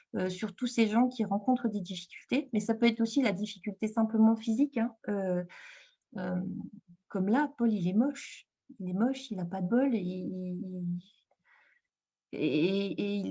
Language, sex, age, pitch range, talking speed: French, female, 30-49, 190-240 Hz, 165 wpm